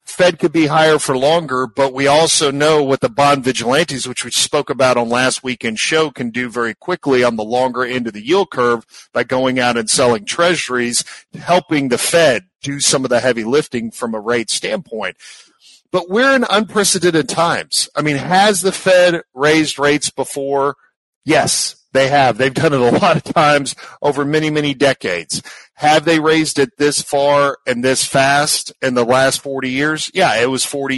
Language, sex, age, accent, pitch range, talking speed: English, male, 50-69, American, 130-160 Hz, 190 wpm